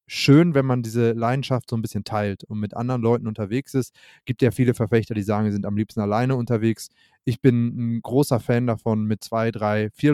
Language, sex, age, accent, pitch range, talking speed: German, male, 30-49, German, 115-140 Hz, 225 wpm